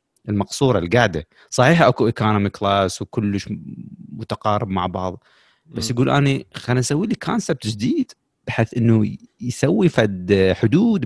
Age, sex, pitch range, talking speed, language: 30-49, male, 105-140 Hz, 125 wpm, Arabic